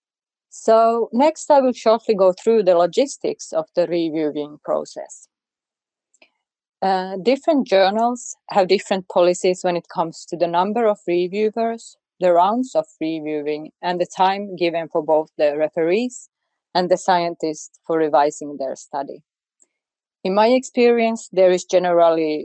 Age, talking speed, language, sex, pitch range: 30-49, 140 wpm, English, female, 175-220 Hz